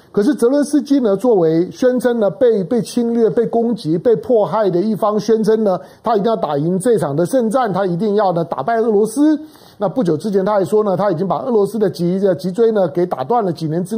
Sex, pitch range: male, 180-230 Hz